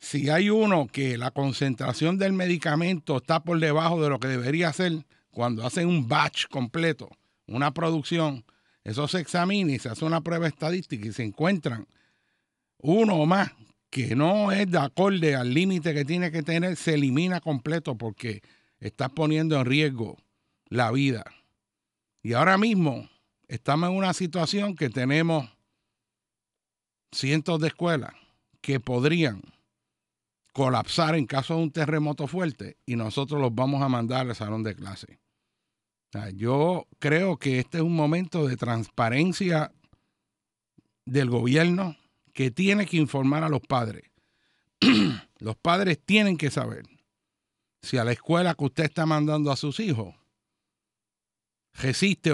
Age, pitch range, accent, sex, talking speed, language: 60-79, 125-165 Hz, American, male, 145 wpm, Spanish